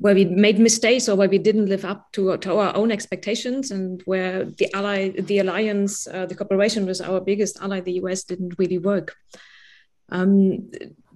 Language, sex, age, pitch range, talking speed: English, female, 30-49, 195-235 Hz, 175 wpm